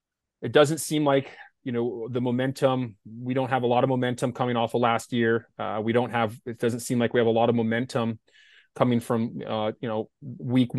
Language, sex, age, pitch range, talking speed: English, male, 30-49, 115-140 Hz, 220 wpm